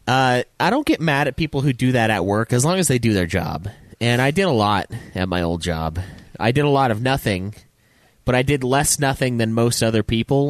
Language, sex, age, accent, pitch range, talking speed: English, male, 30-49, American, 100-130 Hz, 245 wpm